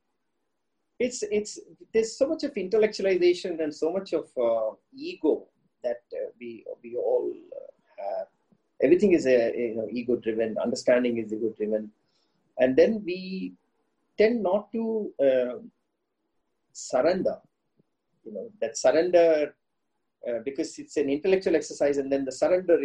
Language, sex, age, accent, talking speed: English, male, 30-49, Indian, 140 wpm